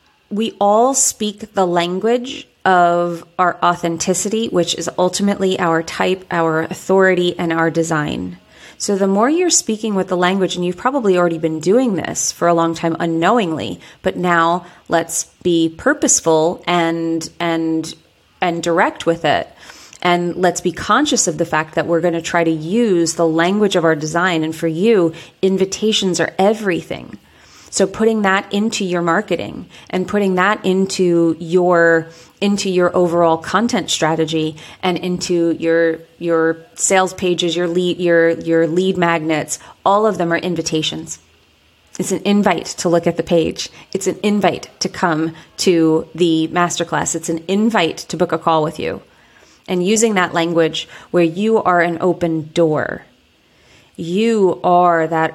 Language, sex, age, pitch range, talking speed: English, female, 30-49, 165-190 Hz, 155 wpm